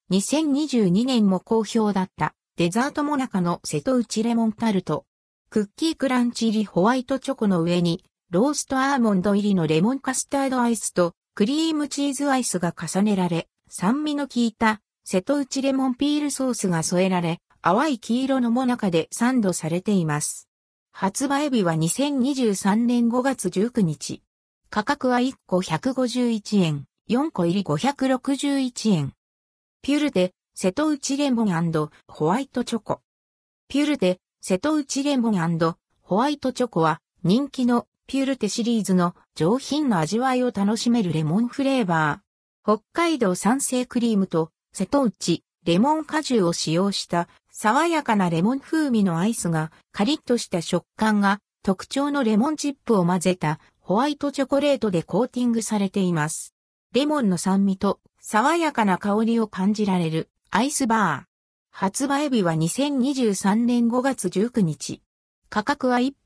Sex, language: female, Japanese